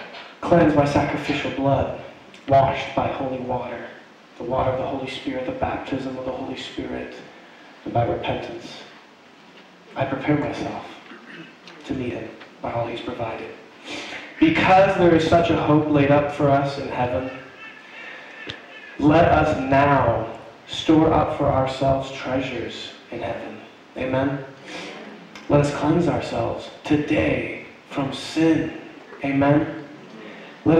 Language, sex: English, male